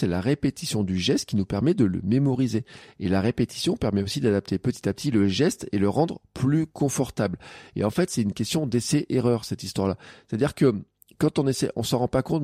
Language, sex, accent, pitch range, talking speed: French, male, French, 105-145 Hz, 220 wpm